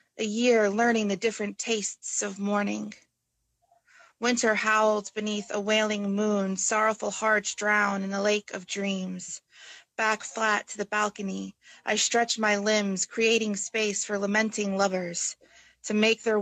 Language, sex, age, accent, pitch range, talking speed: English, female, 30-49, American, 195-215 Hz, 145 wpm